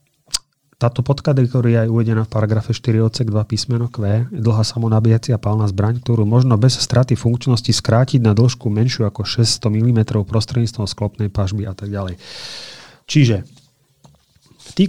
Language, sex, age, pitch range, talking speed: Slovak, male, 30-49, 110-130 Hz, 150 wpm